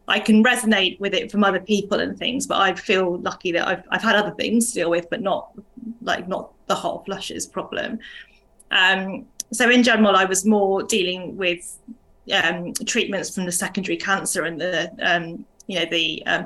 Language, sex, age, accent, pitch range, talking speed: English, female, 20-39, British, 185-220 Hz, 195 wpm